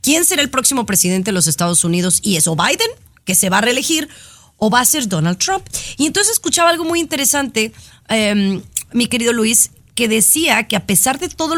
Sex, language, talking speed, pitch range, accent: female, Spanish, 210 wpm, 200-290 Hz, Mexican